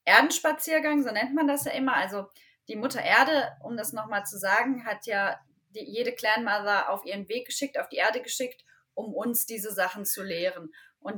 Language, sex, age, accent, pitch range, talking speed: German, female, 20-39, German, 210-265 Hz, 195 wpm